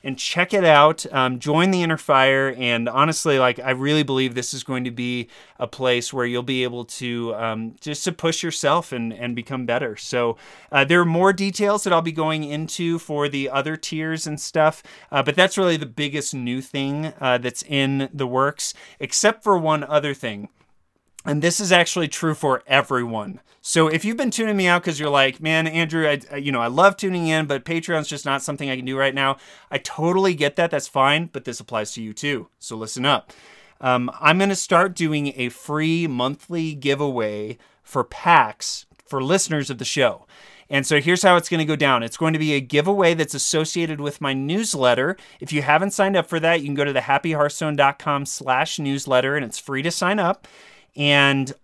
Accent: American